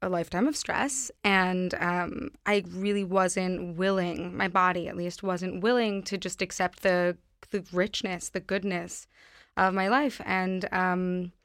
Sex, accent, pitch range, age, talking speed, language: female, American, 180-210 Hz, 20-39, 150 wpm, English